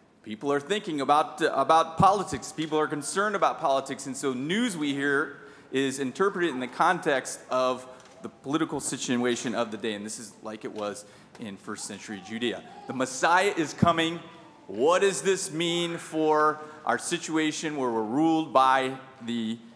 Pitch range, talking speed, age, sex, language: 125-165 Hz, 165 wpm, 30-49, male, English